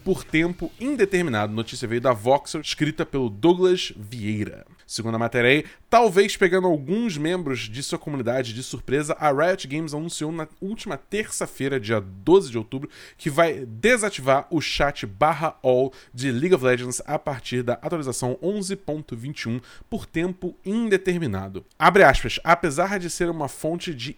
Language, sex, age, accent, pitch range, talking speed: Portuguese, male, 20-39, Brazilian, 125-175 Hz, 155 wpm